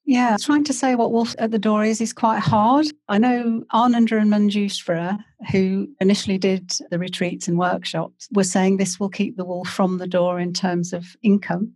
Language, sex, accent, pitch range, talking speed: English, female, British, 175-205 Hz, 200 wpm